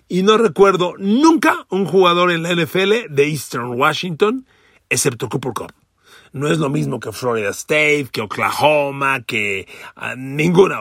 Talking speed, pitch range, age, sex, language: 150 wpm, 125-200 Hz, 40-59, male, Spanish